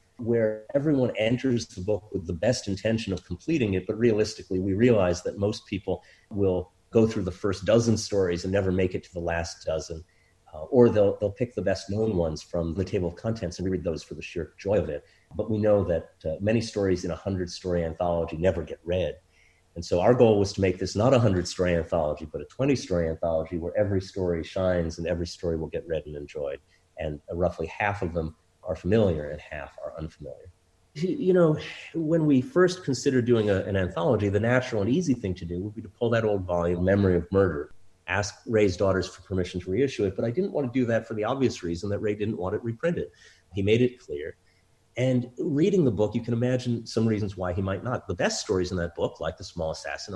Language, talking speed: English, 225 wpm